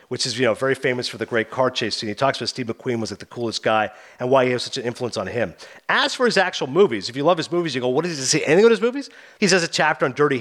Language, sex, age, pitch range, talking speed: English, male, 40-59, 130-190 Hz, 335 wpm